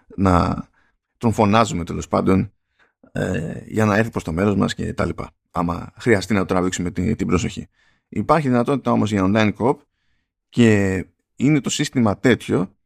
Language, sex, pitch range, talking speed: Greek, male, 95-130 Hz, 150 wpm